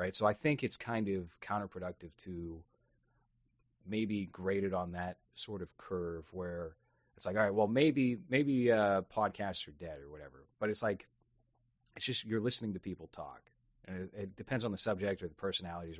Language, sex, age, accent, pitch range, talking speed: English, male, 30-49, American, 85-110 Hz, 190 wpm